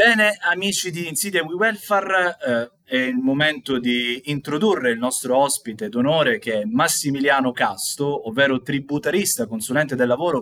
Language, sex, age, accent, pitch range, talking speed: Italian, male, 20-39, native, 125-175 Hz, 130 wpm